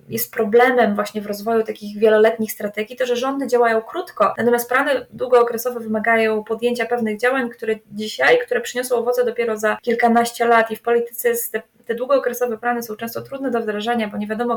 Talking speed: 180 wpm